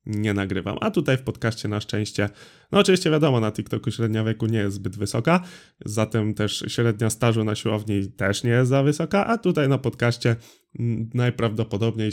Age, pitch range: 20-39, 110-135 Hz